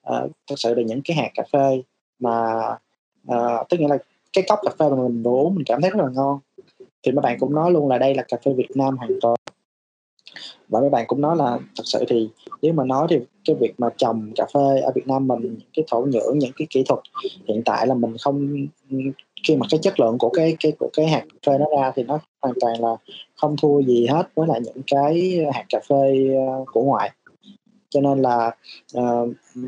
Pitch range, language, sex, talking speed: 130-155 Hz, Vietnamese, male, 235 wpm